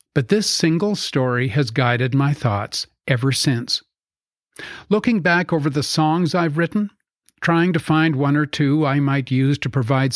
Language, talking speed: English, 165 wpm